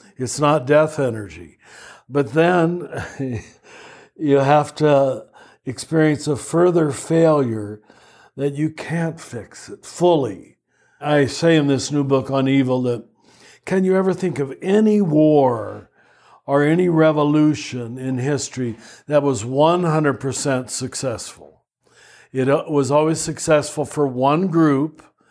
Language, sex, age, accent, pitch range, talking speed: English, male, 60-79, American, 130-165 Hz, 120 wpm